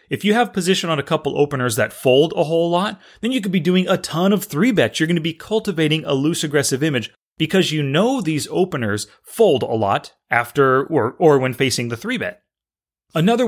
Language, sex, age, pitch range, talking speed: English, male, 30-49, 130-180 Hz, 220 wpm